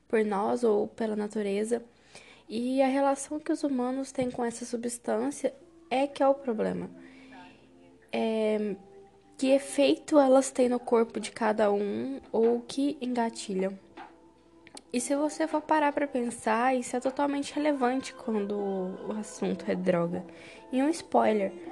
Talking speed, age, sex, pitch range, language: 145 wpm, 10-29, female, 215-270 Hz, Portuguese